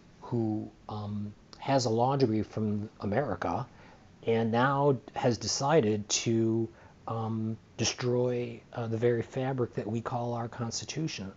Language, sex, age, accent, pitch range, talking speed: English, male, 40-59, American, 105-130 Hz, 120 wpm